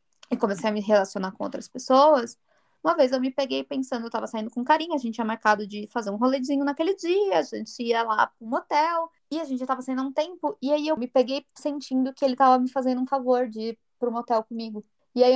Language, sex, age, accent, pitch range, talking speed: Portuguese, female, 20-39, Brazilian, 225-270 Hz, 250 wpm